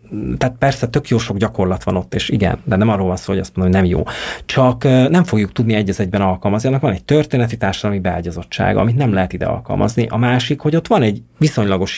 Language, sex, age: Hungarian, male, 30-49